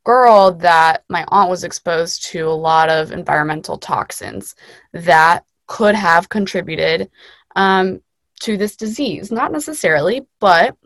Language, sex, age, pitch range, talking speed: English, female, 20-39, 165-195 Hz, 125 wpm